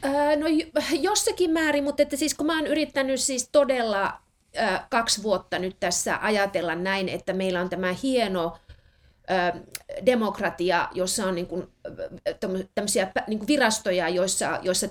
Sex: female